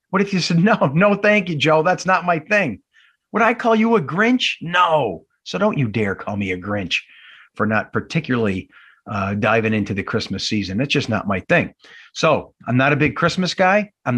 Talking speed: 210 wpm